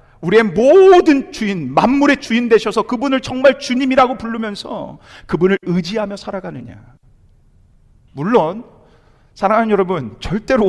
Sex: male